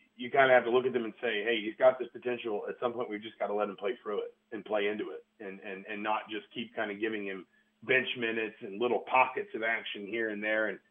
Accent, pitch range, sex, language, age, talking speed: American, 100-135 Hz, male, English, 40-59, 285 wpm